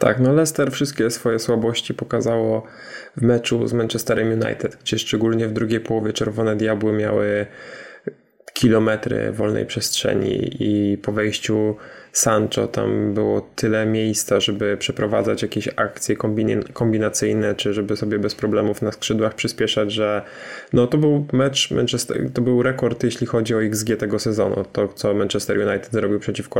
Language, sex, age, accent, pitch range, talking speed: Polish, male, 10-29, native, 105-120 Hz, 145 wpm